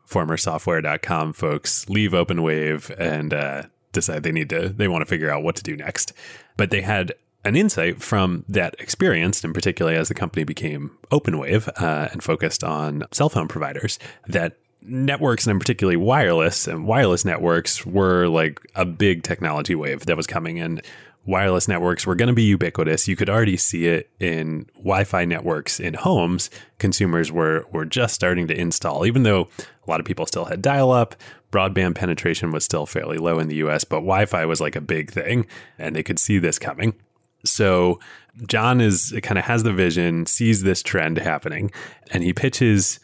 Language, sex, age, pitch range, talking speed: English, male, 20-39, 85-105 Hz, 185 wpm